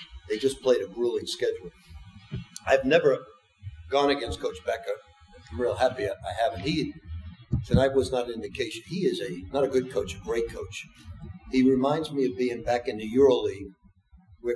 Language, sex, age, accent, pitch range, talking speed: English, male, 50-69, American, 105-150 Hz, 175 wpm